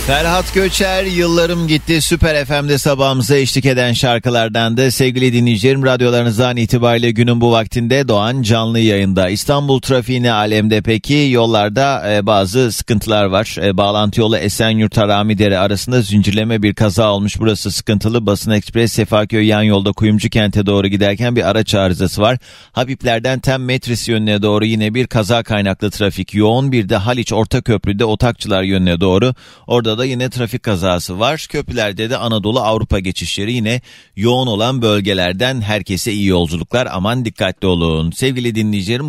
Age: 40-59